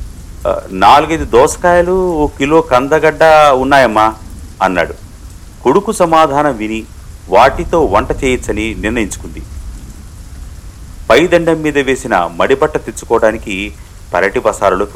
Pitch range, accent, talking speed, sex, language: 85-130 Hz, native, 85 wpm, male, Telugu